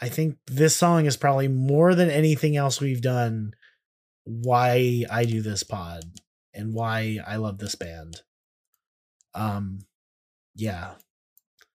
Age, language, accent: 30-49, English, American